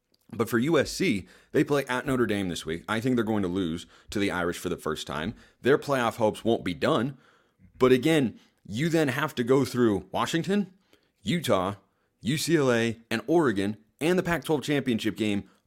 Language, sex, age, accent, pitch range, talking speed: English, male, 30-49, American, 95-115 Hz, 180 wpm